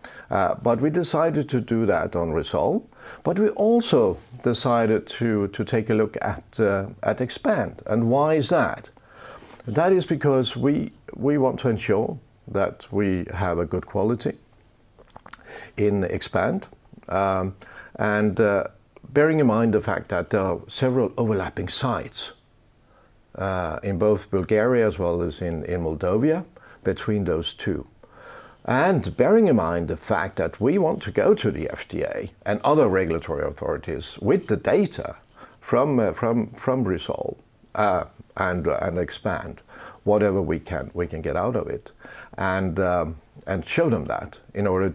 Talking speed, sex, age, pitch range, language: 155 wpm, male, 60-79, 95-125 Hz, Swedish